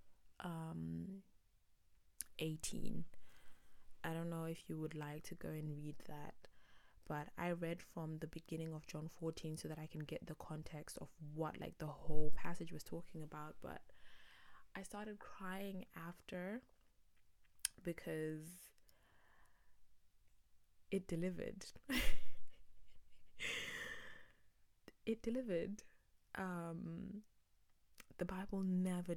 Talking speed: 110 wpm